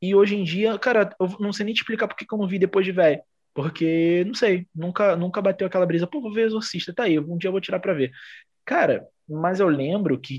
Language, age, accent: Portuguese, 20-39, Brazilian